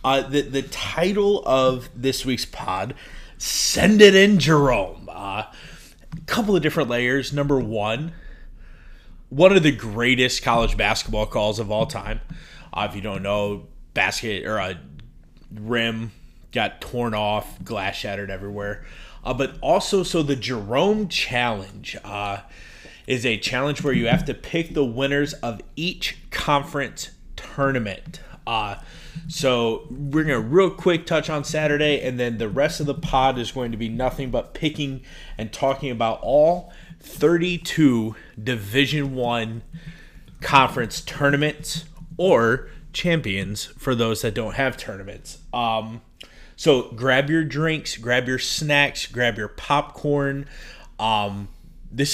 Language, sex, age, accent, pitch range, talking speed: English, male, 30-49, American, 115-155 Hz, 140 wpm